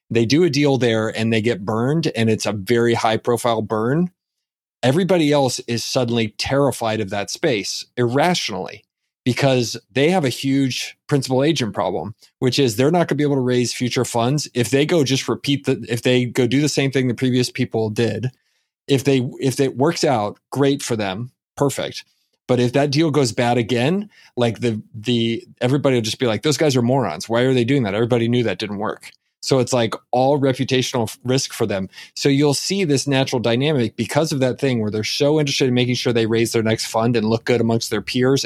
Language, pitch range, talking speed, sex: English, 115-135 Hz, 215 wpm, male